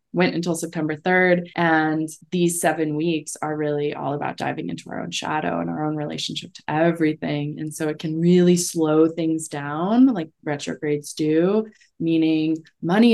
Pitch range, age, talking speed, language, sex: 155-180 Hz, 20-39, 165 wpm, English, female